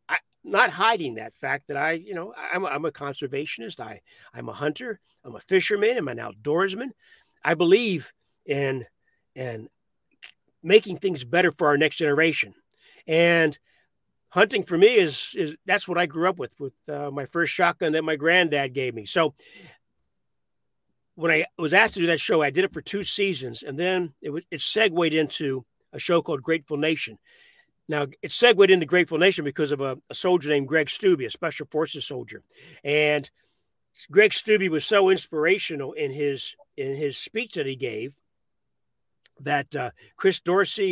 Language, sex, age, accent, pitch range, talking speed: English, male, 50-69, American, 145-190 Hz, 175 wpm